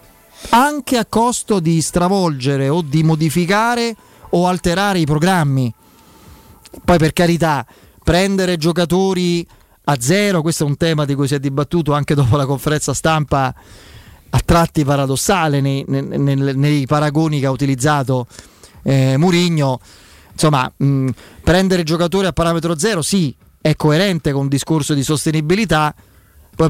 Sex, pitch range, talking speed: male, 140-170 Hz, 140 wpm